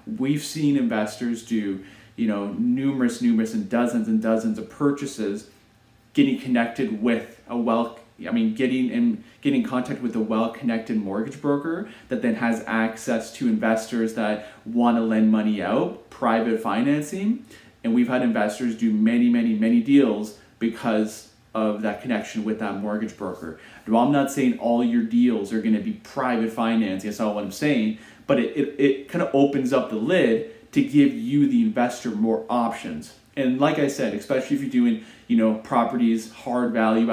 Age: 30-49